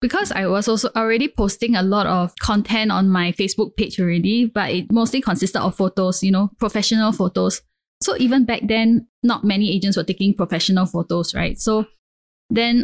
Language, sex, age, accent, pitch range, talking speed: English, female, 10-29, Malaysian, 190-225 Hz, 180 wpm